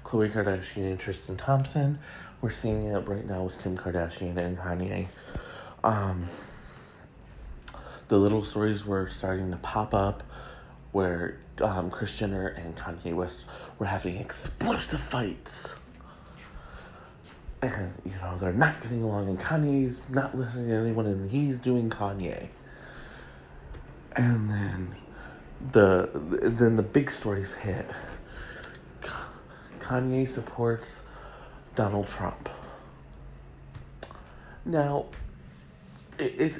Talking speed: 110 wpm